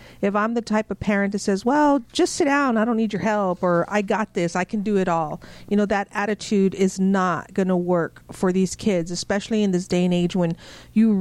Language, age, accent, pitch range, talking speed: English, 50-69, American, 180-220 Hz, 245 wpm